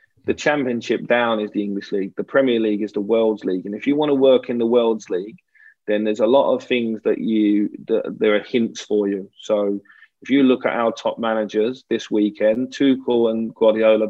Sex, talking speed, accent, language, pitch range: male, 215 wpm, British, English, 110-120 Hz